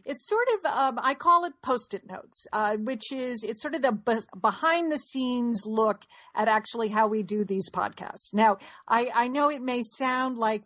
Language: English